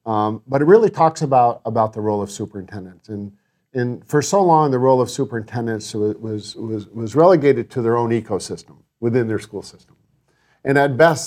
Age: 50-69